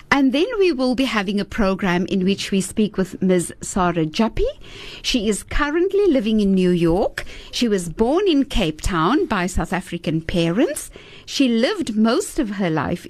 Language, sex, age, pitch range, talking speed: English, female, 60-79, 185-265 Hz, 180 wpm